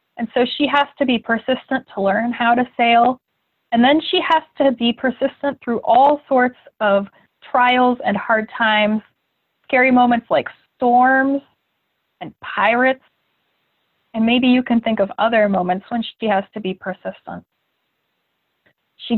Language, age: English, 20-39